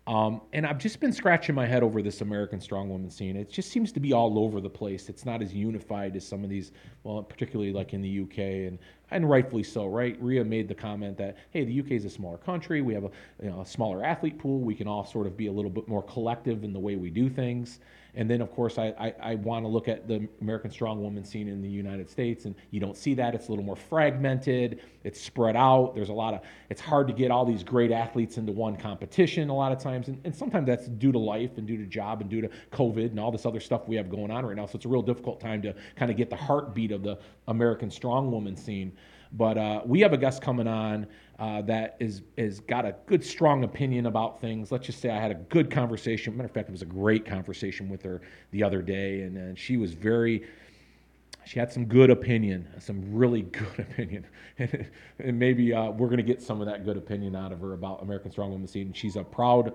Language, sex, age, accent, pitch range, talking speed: English, male, 40-59, American, 100-120 Hz, 255 wpm